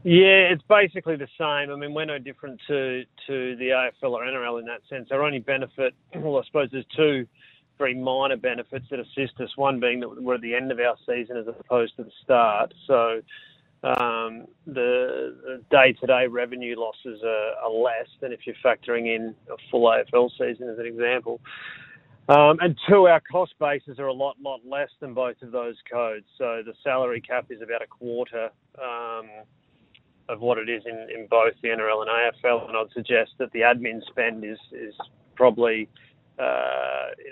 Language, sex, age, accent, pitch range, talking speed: English, male, 30-49, Australian, 120-145 Hz, 185 wpm